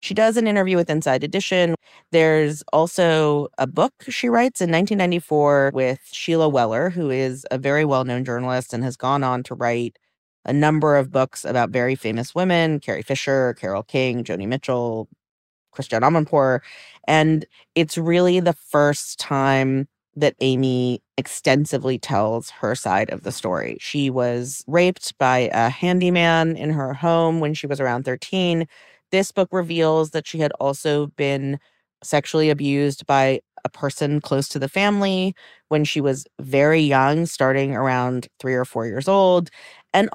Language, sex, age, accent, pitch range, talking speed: English, female, 30-49, American, 130-165 Hz, 155 wpm